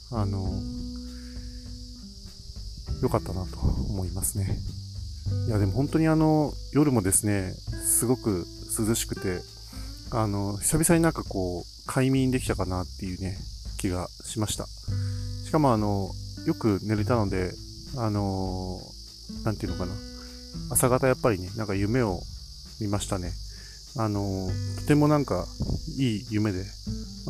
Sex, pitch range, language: male, 95-120 Hz, Japanese